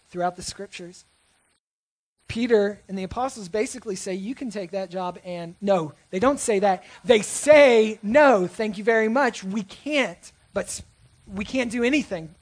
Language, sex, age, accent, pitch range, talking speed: English, male, 30-49, American, 180-235 Hz, 165 wpm